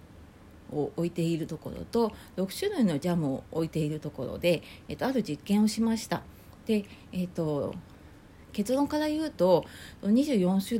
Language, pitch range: Japanese, 145-220 Hz